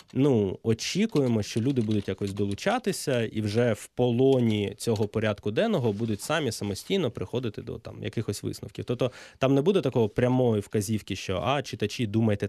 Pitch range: 105-125 Hz